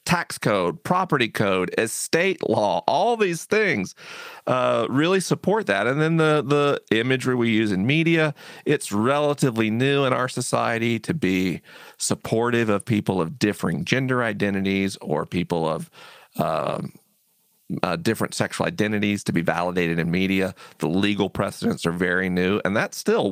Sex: male